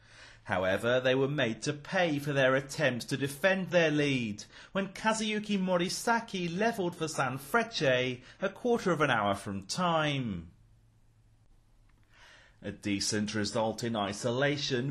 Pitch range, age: 120-190 Hz, 30-49